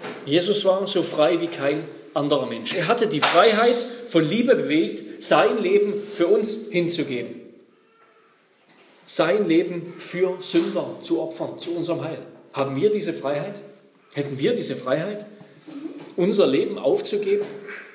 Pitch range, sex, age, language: 160-240 Hz, male, 40-59, German